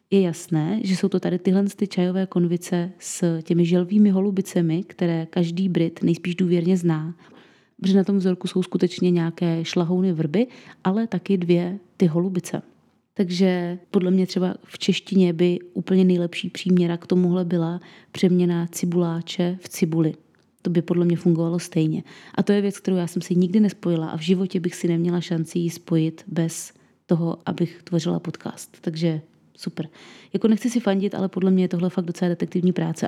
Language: Czech